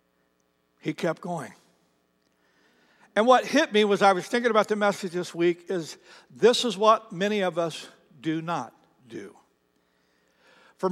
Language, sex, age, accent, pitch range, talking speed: English, male, 60-79, American, 135-200 Hz, 150 wpm